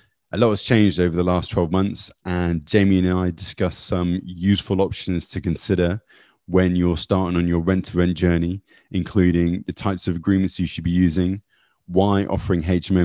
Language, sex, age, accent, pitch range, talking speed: English, male, 20-39, British, 90-100 Hz, 185 wpm